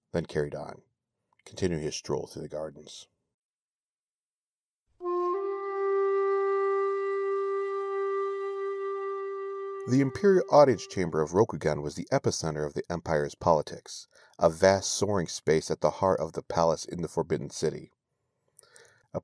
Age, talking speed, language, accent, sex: 40-59, 115 wpm, English, American, male